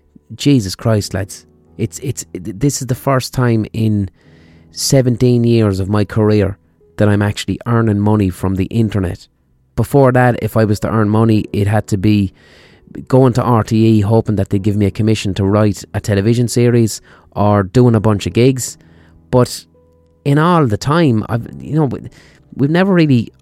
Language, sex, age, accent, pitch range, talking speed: English, male, 30-49, Irish, 95-125 Hz, 175 wpm